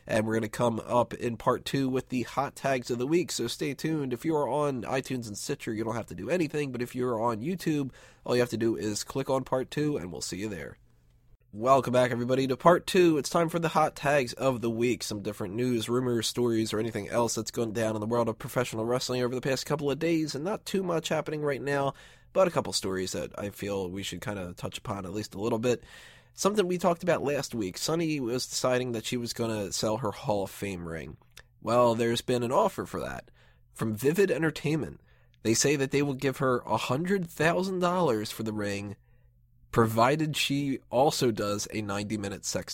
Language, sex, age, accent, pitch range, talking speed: English, male, 20-39, American, 110-145 Hz, 225 wpm